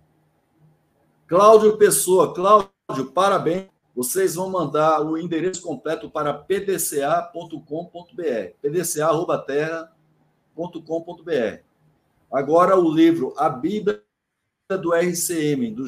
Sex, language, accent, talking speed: male, Portuguese, Brazilian, 80 wpm